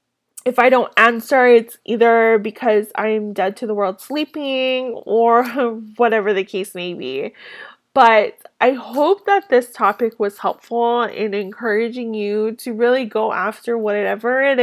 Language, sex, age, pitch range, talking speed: English, female, 20-39, 215-250 Hz, 150 wpm